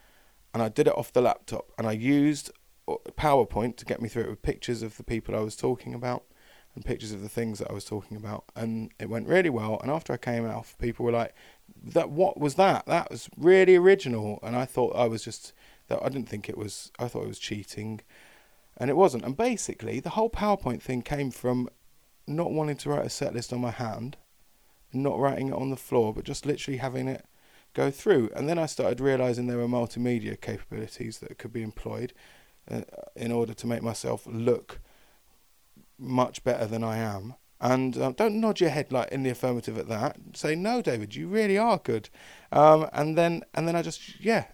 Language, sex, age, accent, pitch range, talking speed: English, male, 20-39, British, 115-150 Hz, 215 wpm